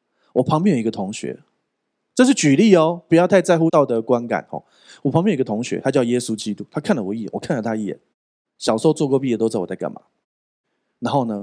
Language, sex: Chinese, male